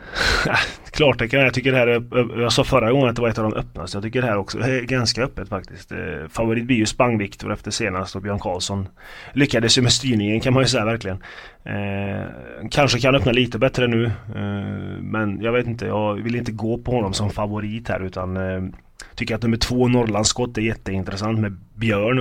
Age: 20-39